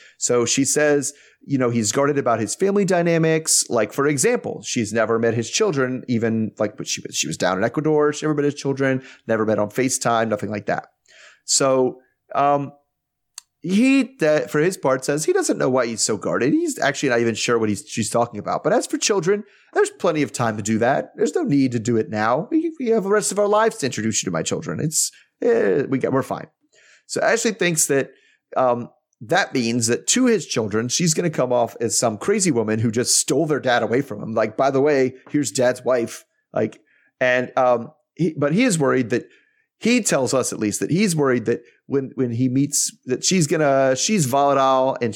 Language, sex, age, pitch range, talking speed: English, male, 30-49, 120-165 Hz, 225 wpm